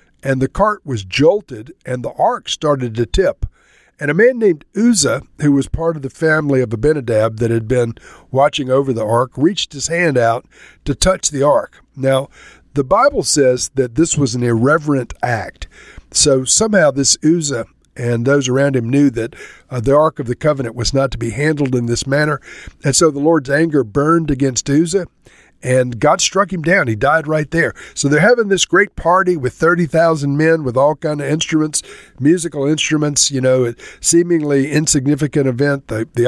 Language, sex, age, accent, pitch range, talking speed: English, male, 50-69, American, 125-155 Hz, 190 wpm